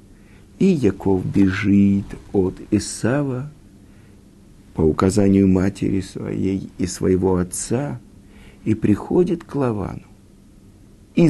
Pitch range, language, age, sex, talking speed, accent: 100-135 Hz, Russian, 60-79, male, 90 wpm, native